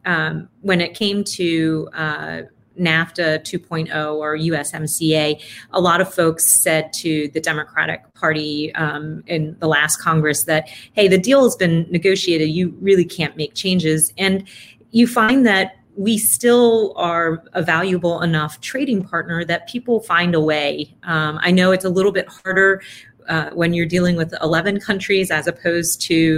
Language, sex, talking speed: English, female, 160 wpm